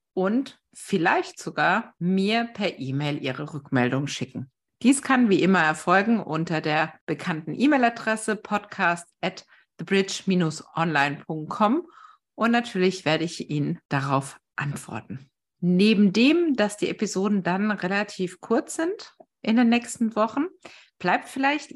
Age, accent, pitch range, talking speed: 50-69, German, 160-225 Hz, 120 wpm